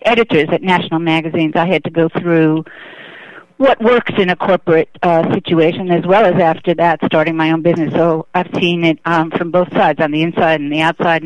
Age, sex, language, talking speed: 50-69, female, English, 210 wpm